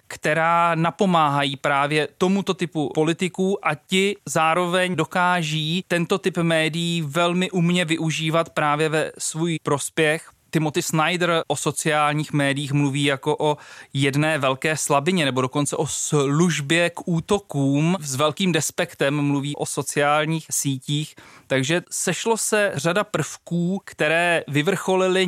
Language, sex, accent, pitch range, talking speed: Czech, male, native, 145-175 Hz, 120 wpm